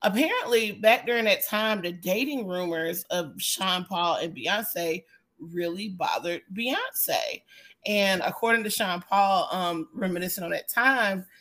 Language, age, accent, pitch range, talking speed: English, 30-49, American, 170-215 Hz, 135 wpm